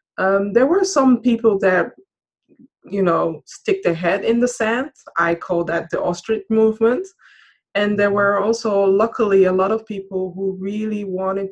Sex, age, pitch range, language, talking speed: female, 20-39, 175-220 Hz, English, 165 wpm